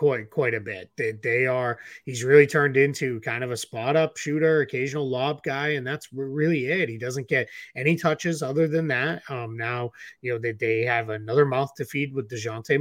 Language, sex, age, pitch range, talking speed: English, male, 20-39, 120-165 Hz, 210 wpm